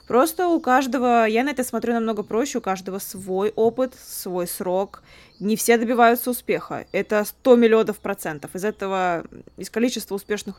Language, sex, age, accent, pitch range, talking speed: Russian, female, 20-39, native, 180-225 Hz, 160 wpm